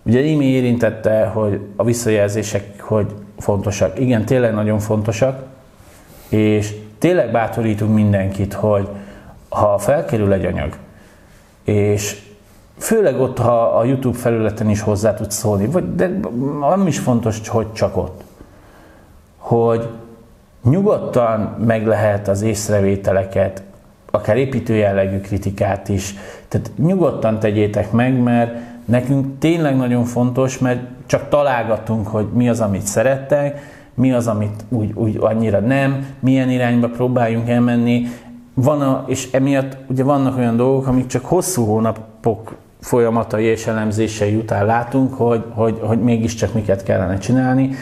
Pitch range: 105-125 Hz